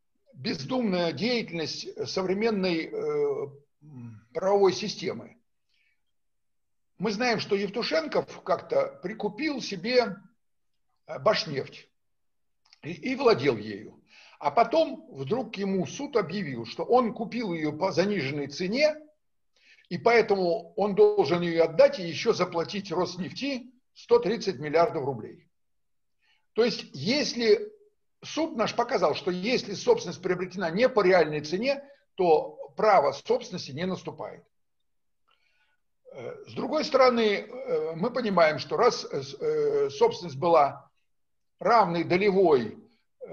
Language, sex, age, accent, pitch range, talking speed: Russian, male, 60-79, native, 180-275 Hz, 100 wpm